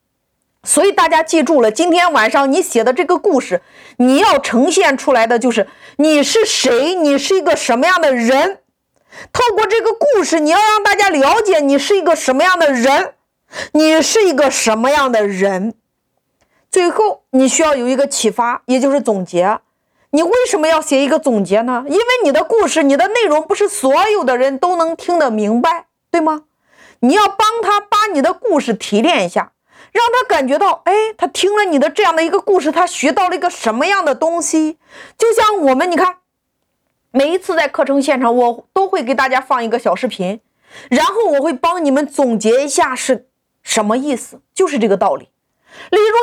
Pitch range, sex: 260-375 Hz, female